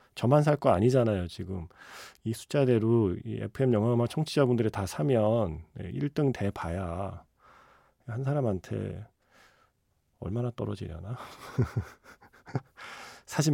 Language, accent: Korean, native